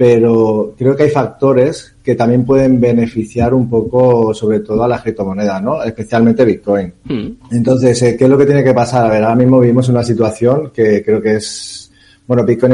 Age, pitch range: 30-49, 105-125 Hz